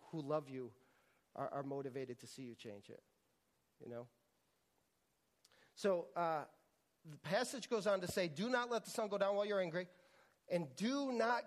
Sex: male